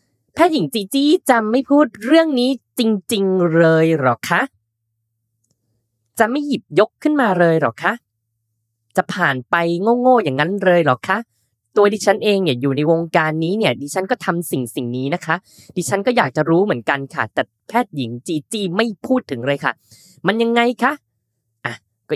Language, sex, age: Thai, female, 10-29